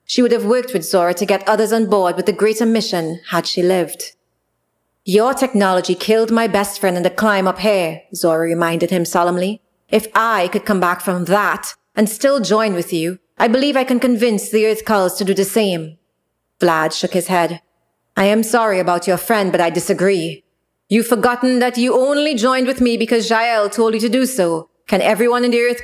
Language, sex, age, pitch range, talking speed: English, female, 30-49, 180-235 Hz, 210 wpm